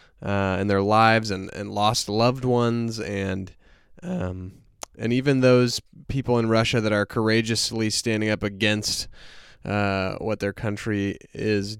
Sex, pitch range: male, 100-125 Hz